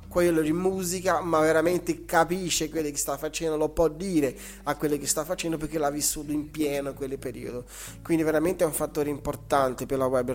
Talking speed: 205 wpm